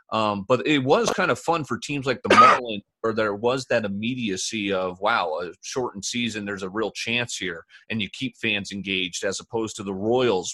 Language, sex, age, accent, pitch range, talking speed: English, male, 30-49, American, 100-135 Hz, 210 wpm